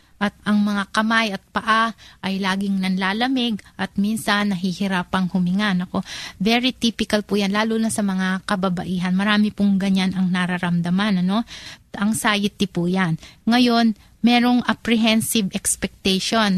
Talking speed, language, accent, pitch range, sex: 130 wpm, Filipino, native, 190-225 Hz, female